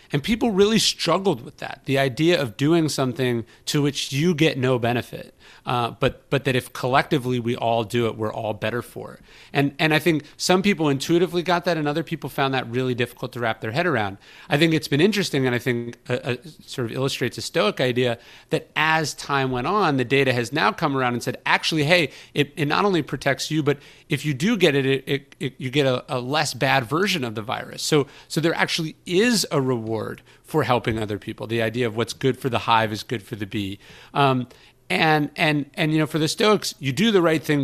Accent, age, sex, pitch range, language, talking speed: American, 30-49, male, 120-155 Hz, English, 235 wpm